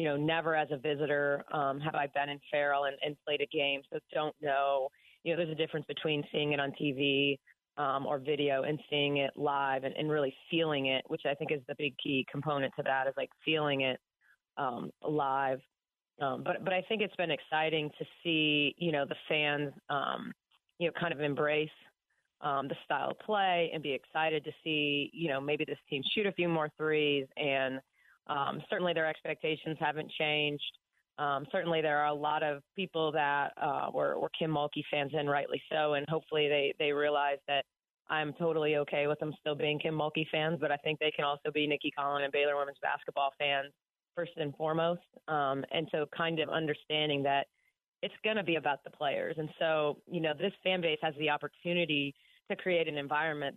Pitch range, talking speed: 145-160 Hz, 205 wpm